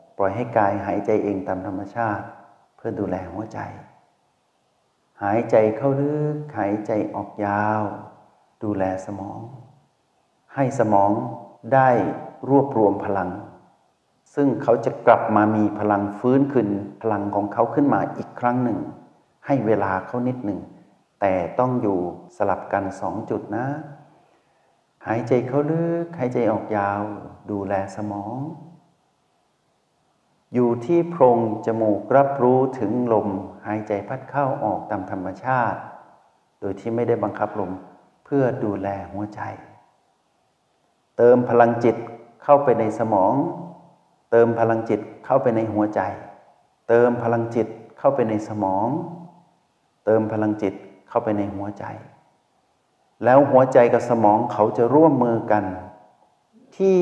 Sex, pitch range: male, 105-130 Hz